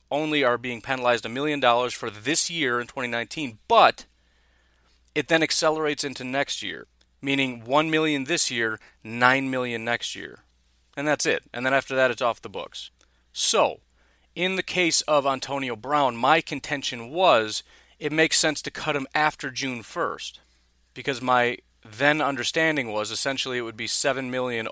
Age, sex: 40-59, male